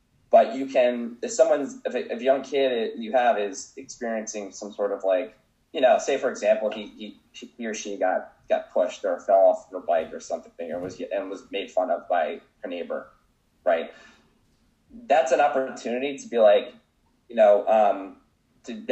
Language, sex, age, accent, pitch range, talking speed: English, male, 20-39, American, 105-135 Hz, 190 wpm